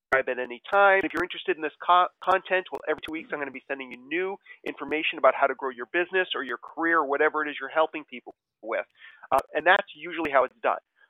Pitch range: 140-195 Hz